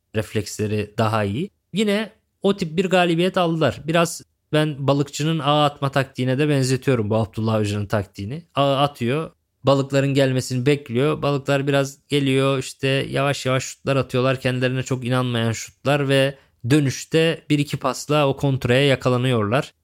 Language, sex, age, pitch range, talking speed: Turkish, male, 20-39, 125-150 Hz, 140 wpm